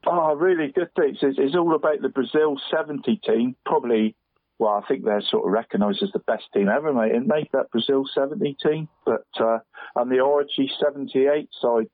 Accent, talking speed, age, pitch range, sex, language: British, 190 wpm, 50-69, 115-150 Hz, male, English